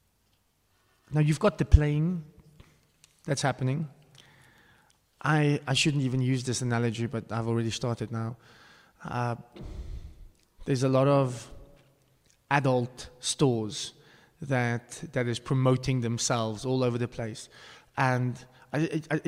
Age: 20-39